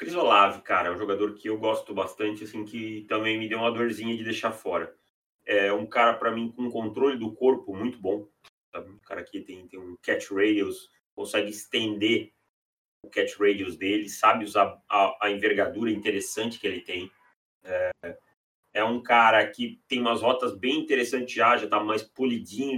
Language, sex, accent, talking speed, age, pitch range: Portuguese, male, Brazilian, 180 wpm, 30-49, 110-135 Hz